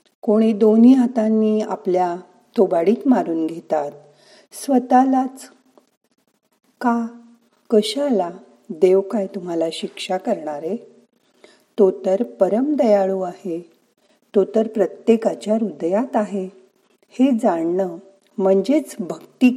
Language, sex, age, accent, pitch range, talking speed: Marathi, female, 50-69, native, 185-235 Hz, 90 wpm